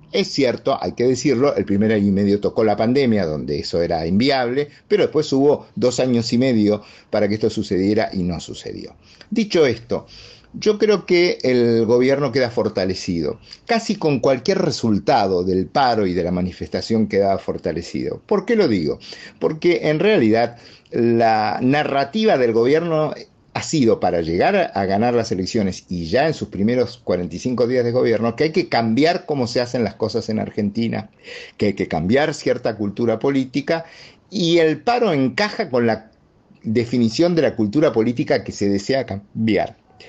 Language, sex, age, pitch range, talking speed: English, male, 50-69, 110-140 Hz, 170 wpm